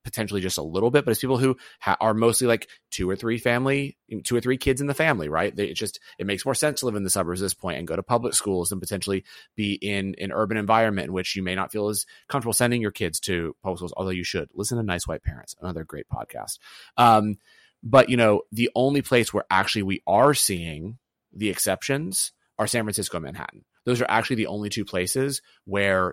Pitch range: 95-115 Hz